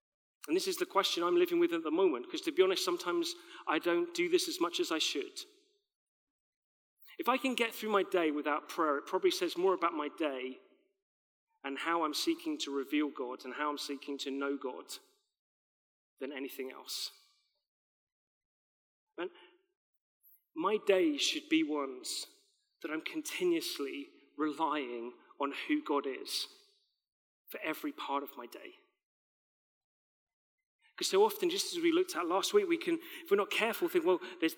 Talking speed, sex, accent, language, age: 165 wpm, male, British, English, 40-59